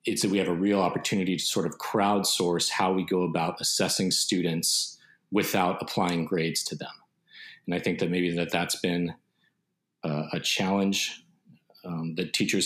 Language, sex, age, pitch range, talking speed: English, male, 40-59, 80-90 Hz, 170 wpm